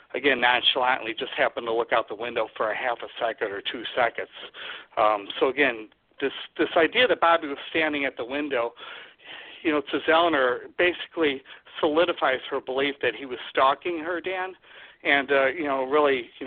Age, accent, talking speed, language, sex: 60-79, American, 180 wpm, English, male